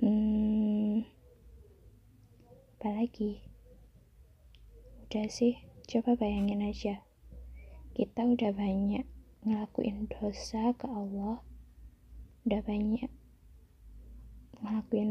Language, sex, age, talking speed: Malay, female, 20-39, 70 wpm